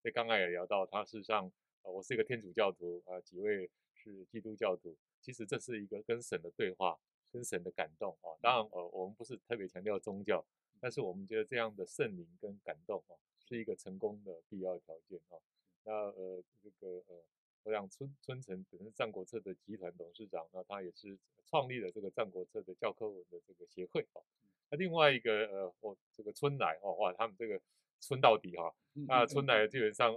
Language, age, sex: Chinese, 30-49, male